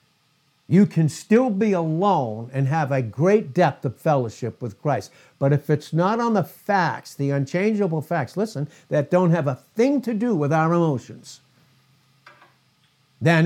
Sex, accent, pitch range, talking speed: male, American, 125-170 Hz, 160 wpm